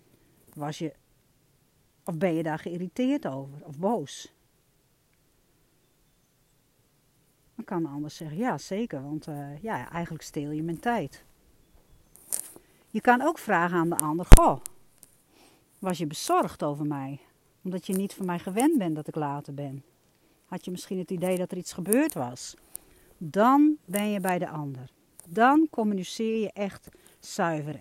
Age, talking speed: 60-79, 150 wpm